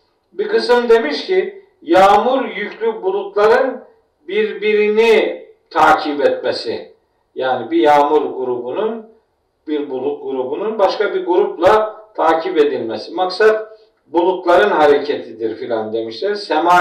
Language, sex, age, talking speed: Turkish, male, 50-69, 100 wpm